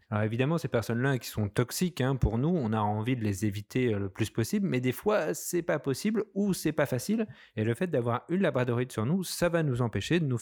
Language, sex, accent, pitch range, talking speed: French, male, French, 120-175 Hz, 250 wpm